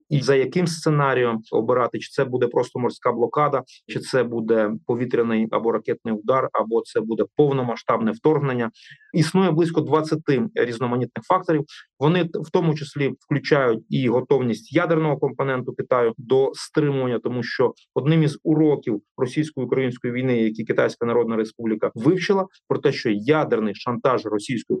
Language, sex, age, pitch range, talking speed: Ukrainian, male, 30-49, 125-155 Hz, 140 wpm